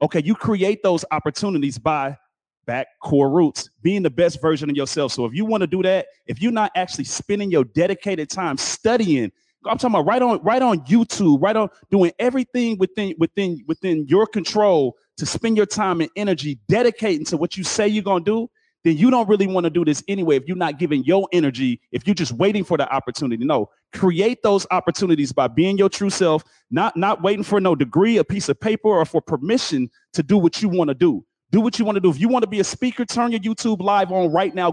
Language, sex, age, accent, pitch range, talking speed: English, male, 30-49, American, 165-210 Hz, 230 wpm